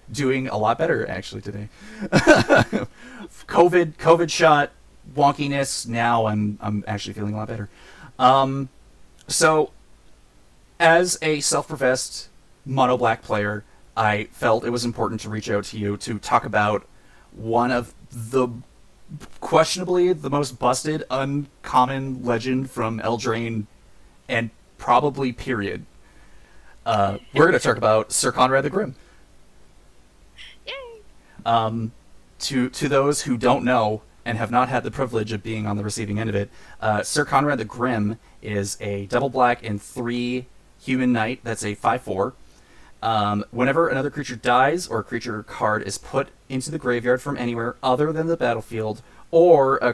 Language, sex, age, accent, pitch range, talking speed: English, male, 30-49, American, 110-135 Hz, 145 wpm